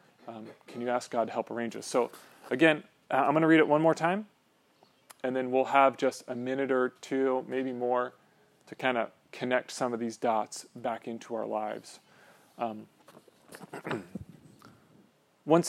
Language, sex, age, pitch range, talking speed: English, male, 40-59, 125-150 Hz, 170 wpm